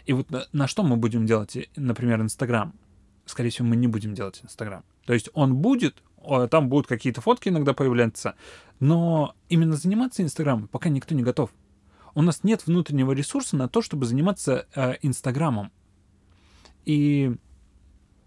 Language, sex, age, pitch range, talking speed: Russian, male, 20-39, 115-150 Hz, 155 wpm